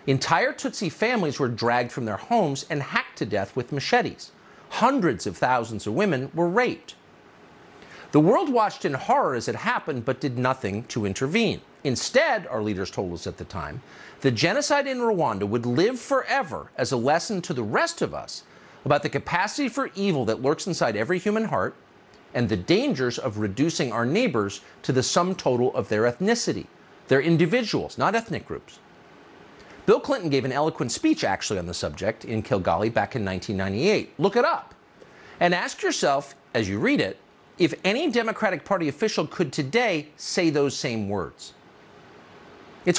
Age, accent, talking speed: 50-69, American, 175 wpm